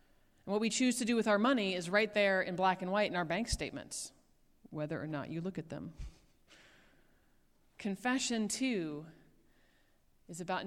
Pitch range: 170-215 Hz